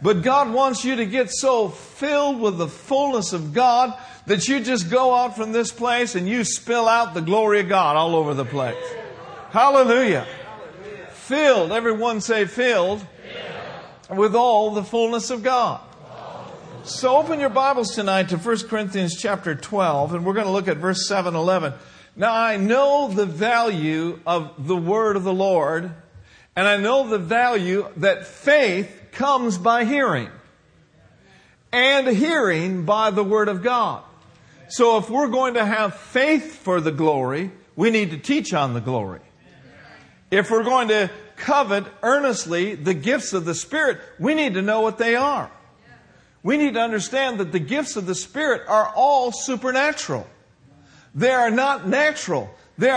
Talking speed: 160 wpm